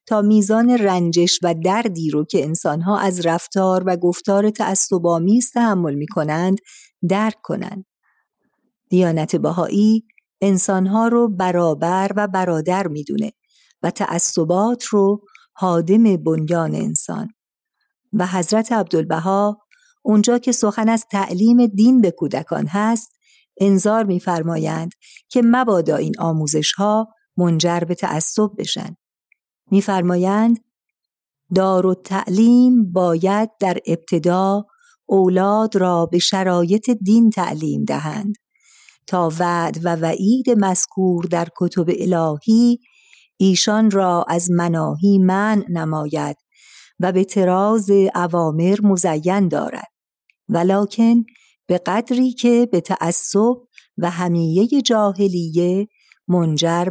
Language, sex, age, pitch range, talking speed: Persian, female, 50-69, 175-215 Hz, 105 wpm